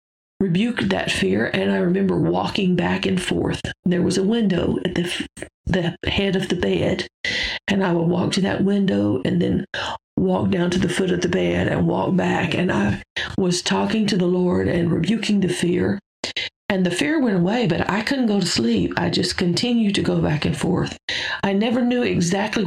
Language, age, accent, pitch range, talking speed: English, 50-69, American, 175-200 Hz, 200 wpm